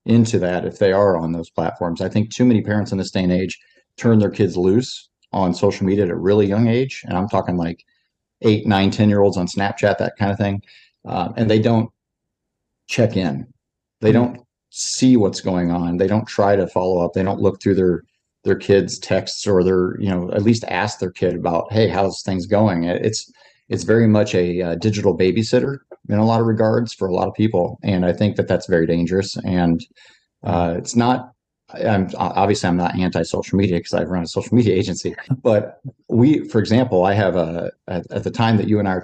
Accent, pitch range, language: American, 90-110 Hz, English